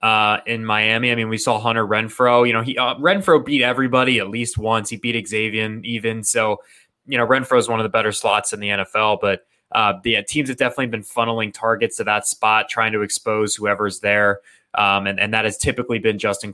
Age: 20-39